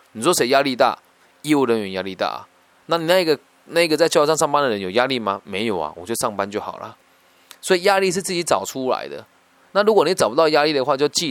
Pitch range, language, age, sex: 100-160 Hz, Chinese, 20-39, male